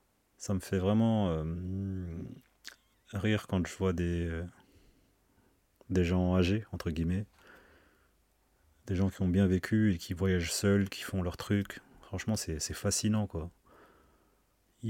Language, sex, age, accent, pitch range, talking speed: French, male, 30-49, French, 90-105 Hz, 145 wpm